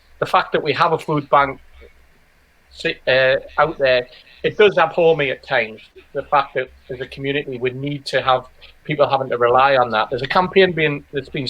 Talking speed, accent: 205 wpm, British